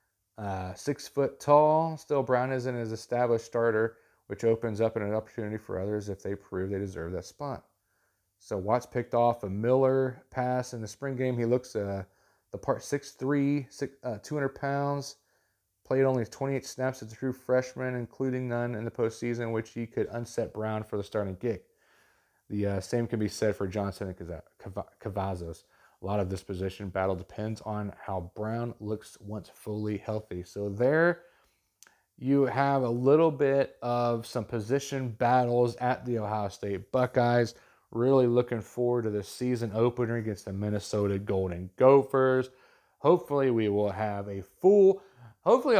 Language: English